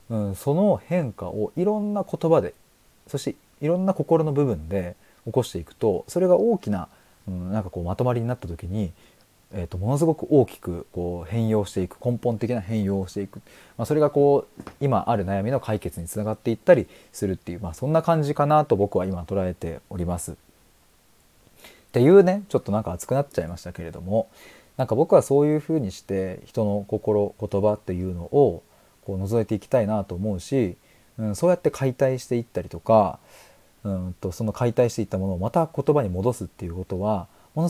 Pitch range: 95-135 Hz